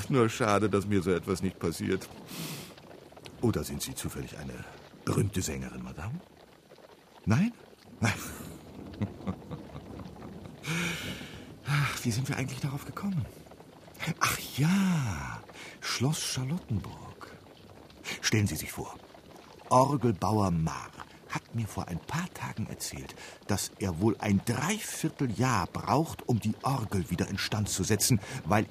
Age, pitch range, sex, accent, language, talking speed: 50-69, 95-130 Hz, male, German, German, 115 wpm